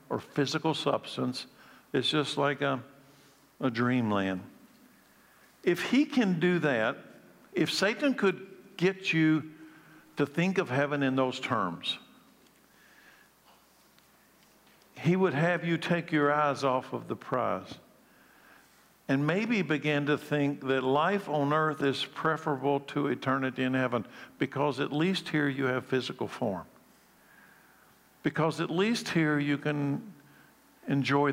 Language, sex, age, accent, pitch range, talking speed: English, male, 60-79, American, 135-160 Hz, 130 wpm